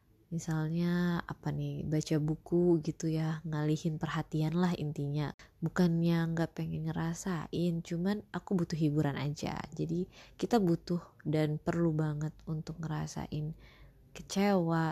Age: 20-39